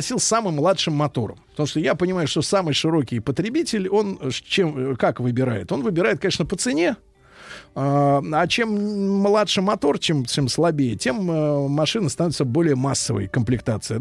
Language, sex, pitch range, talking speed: Russian, male, 135-190 Hz, 140 wpm